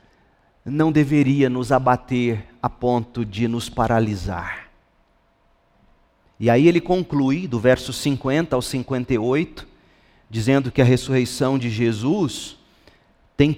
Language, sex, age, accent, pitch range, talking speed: Portuguese, male, 40-59, Brazilian, 120-160 Hz, 110 wpm